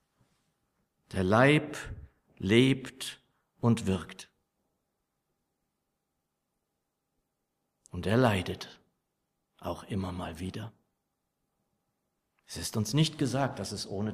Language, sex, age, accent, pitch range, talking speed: German, male, 50-69, German, 100-130 Hz, 85 wpm